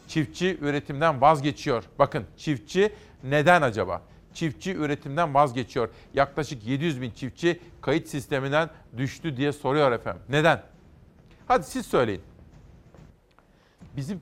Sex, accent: male, native